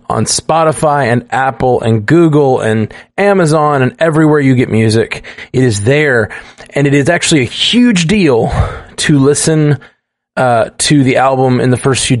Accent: American